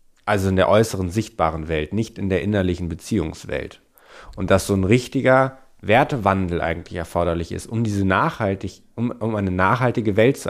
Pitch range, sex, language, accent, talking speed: 95-125 Hz, male, German, German, 165 wpm